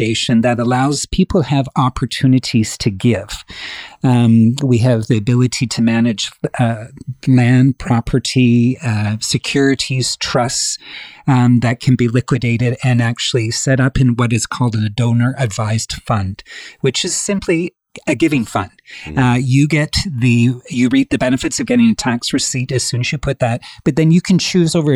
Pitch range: 120-140 Hz